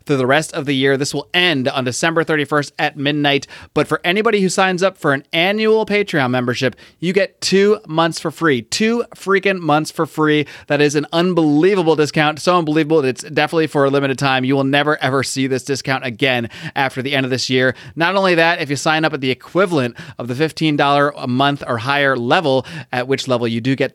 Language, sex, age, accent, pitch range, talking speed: English, male, 30-49, American, 130-160 Hz, 220 wpm